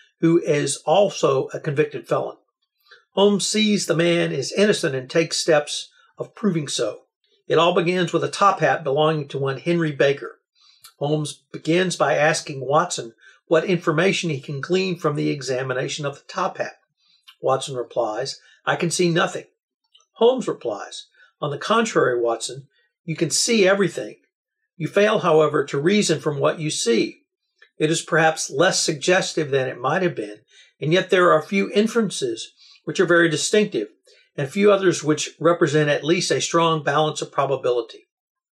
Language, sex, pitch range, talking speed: English, male, 150-195 Hz, 165 wpm